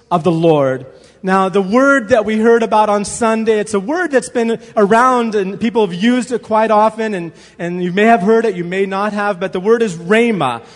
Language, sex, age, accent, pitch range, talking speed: English, male, 30-49, American, 180-230 Hz, 230 wpm